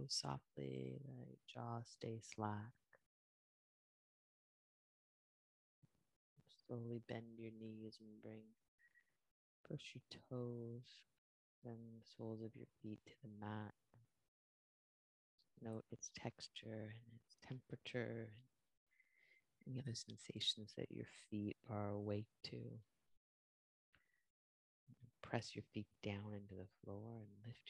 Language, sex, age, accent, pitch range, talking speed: English, female, 30-49, American, 105-125 Hz, 105 wpm